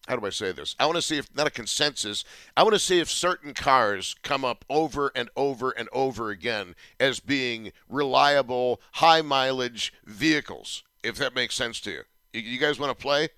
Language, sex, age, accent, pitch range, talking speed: English, male, 50-69, American, 110-145 Hz, 195 wpm